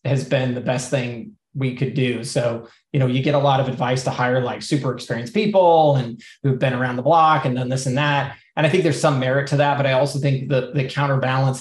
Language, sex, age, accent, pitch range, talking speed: English, male, 20-39, American, 130-150 Hz, 255 wpm